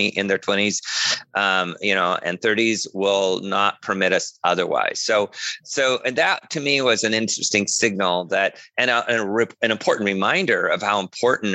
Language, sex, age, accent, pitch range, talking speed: English, male, 40-59, American, 95-115 Hz, 175 wpm